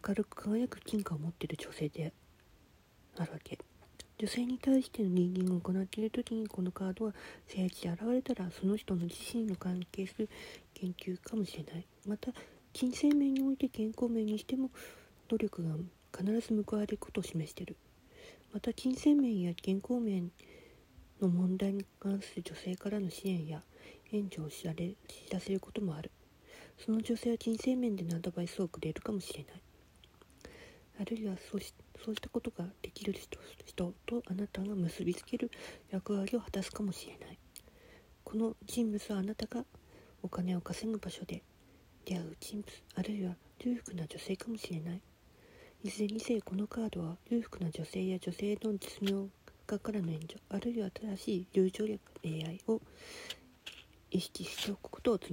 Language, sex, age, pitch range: Japanese, female, 40-59, 180-225 Hz